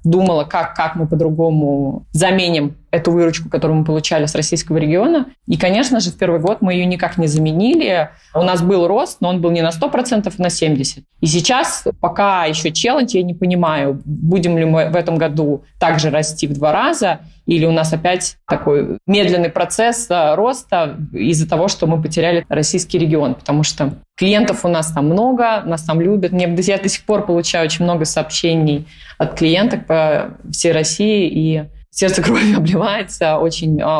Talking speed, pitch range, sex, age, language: 180 wpm, 155-185 Hz, female, 20-39, Russian